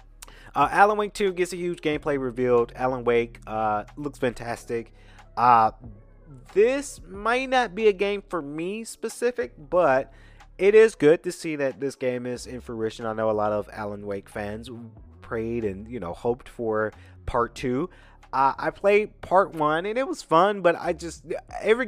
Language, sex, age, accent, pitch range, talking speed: English, male, 30-49, American, 110-155 Hz, 180 wpm